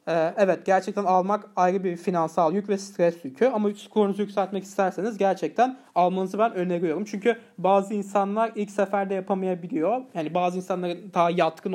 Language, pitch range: Turkish, 180-215 Hz